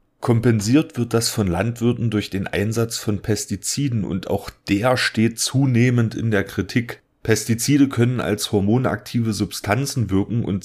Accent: German